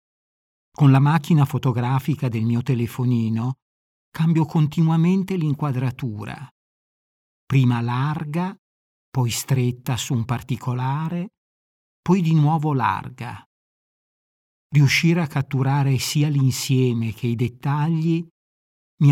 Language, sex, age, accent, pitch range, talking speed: Italian, male, 60-79, native, 120-150 Hz, 95 wpm